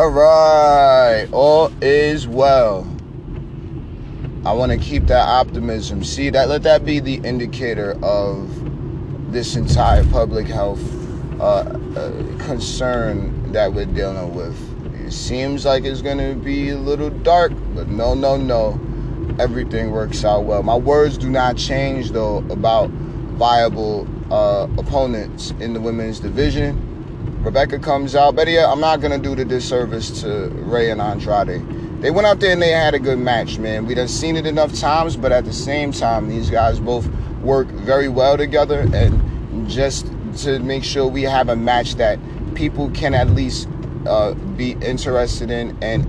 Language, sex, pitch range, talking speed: English, male, 110-140 Hz, 165 wpm